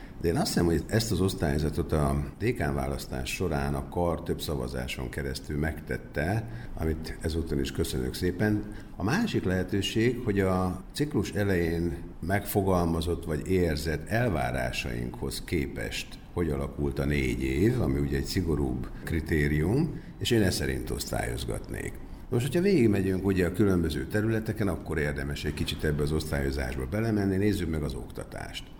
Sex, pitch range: male, 70-100 Hz